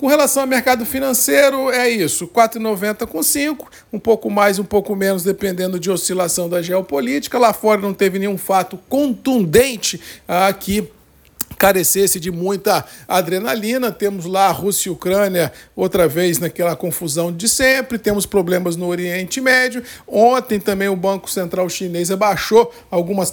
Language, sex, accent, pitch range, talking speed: Portuguese, male, Brazilian, 185-235 Hz, 150 wpm